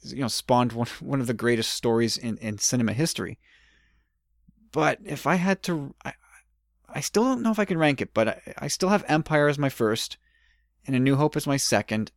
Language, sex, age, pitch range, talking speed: English, male, 30-49, 110-145 Hz, 215 wpm